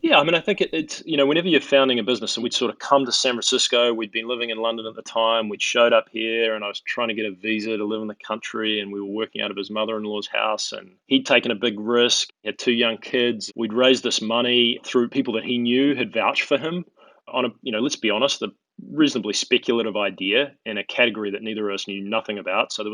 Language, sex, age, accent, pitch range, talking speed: English, male, 20-39, Australian, 110-125 Hz, 265 wpm